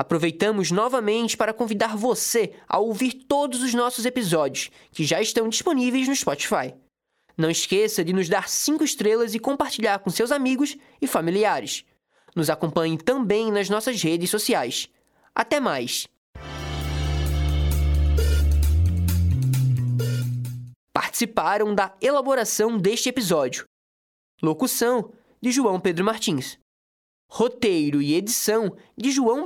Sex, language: male, Portuguese